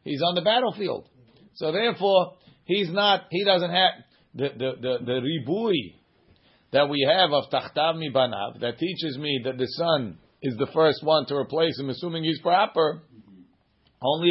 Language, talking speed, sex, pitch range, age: English, 170 wpm, male, 125-160 Hz, 40-59